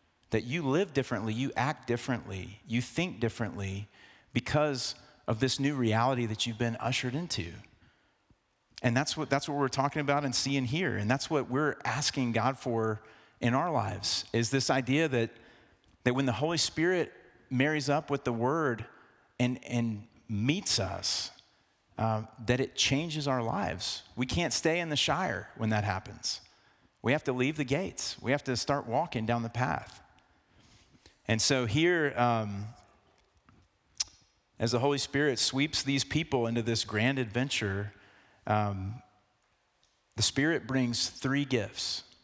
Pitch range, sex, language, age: 110-135 Hz, male, English, 40-59